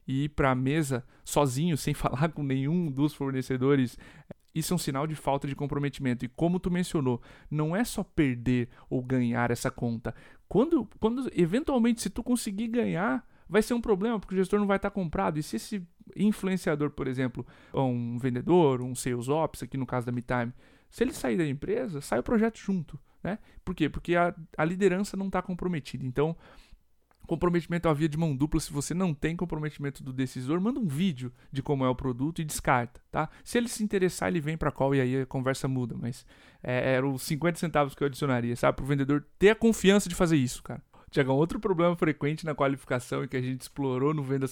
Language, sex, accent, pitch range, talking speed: Portuguese, male, Brazilian, 130-175 Hz, 215 wpm